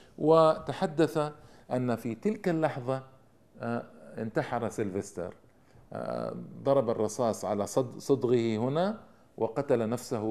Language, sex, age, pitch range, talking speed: Arabic, male, 50-69, 115-155 Hz, 80 wpm